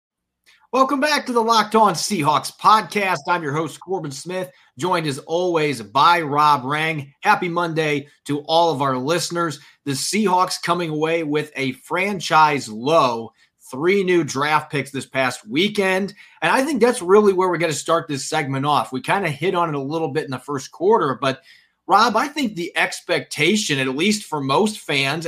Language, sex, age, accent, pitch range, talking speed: English, male, 30-49, American, 135-175 Hz, 185 wpm